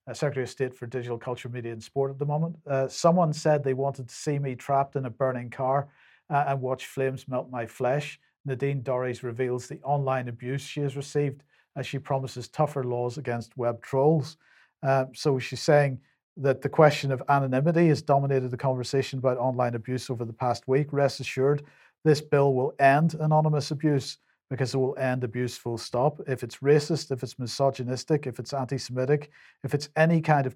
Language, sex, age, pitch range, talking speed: English, male, 50-69, 125-145 Hz, 190 wpm